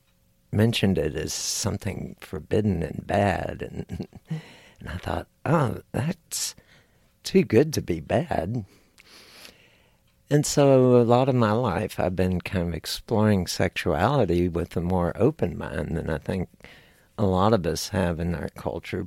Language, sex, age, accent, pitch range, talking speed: English, male, 60-79, American, 90-120 Hz, 150 wpm